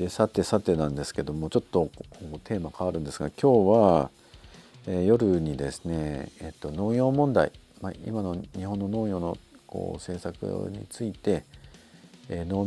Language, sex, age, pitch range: Japanese, male, 50-69, 75-100 Hz